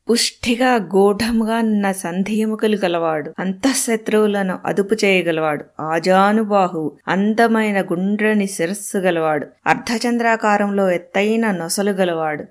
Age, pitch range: 20-39, 185-230 Hz